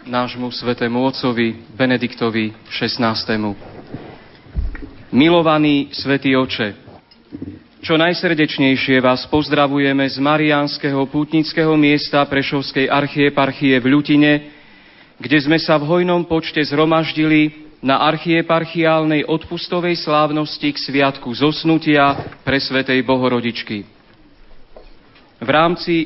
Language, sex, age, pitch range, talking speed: Slovak, male, 40-59, 140-160 Hz, 90 wpm